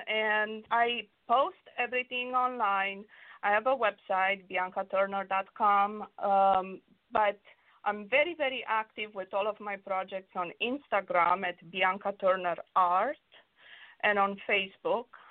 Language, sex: English, female